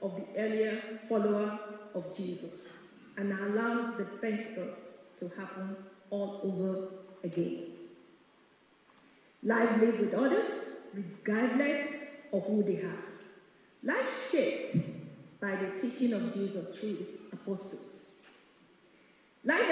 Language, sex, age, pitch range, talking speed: English, female, 40-59, 195-235 Hz, 105 wpm